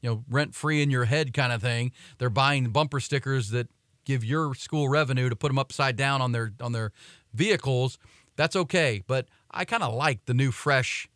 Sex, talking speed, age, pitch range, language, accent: male, 210 wpm, 40-59, 125-145 Hz, English, American